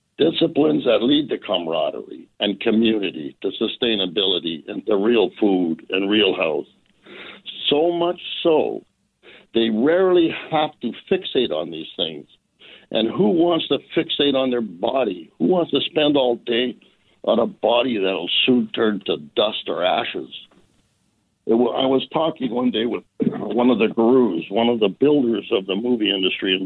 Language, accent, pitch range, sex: English, American, 115-160 Hz, male